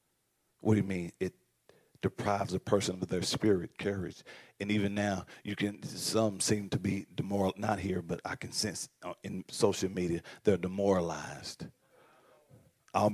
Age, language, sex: 40-59, English, male